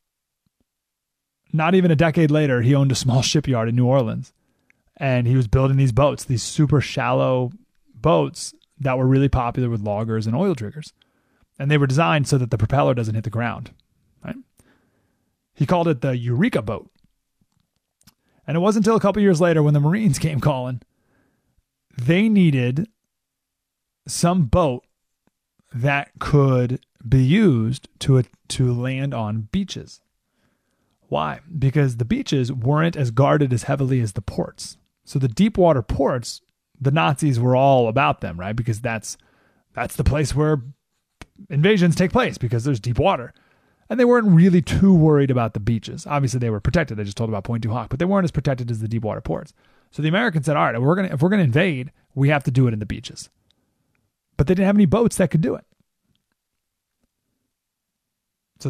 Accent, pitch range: American, 125-160 Hz